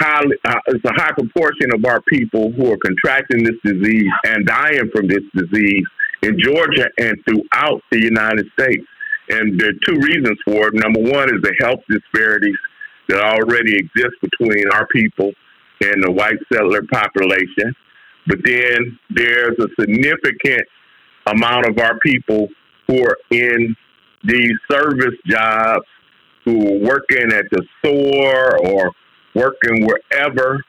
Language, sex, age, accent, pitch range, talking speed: English, male, 50-69, American, 110-135 Hz, 145 wpm